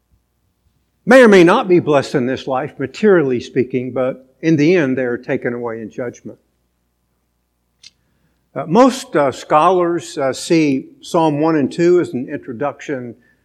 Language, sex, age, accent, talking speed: English, male, 60-79, American, 150 wpm